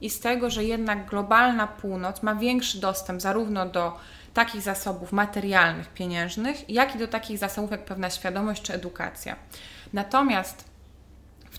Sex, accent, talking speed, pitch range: female, native, 145 wpm, 180-220 Hz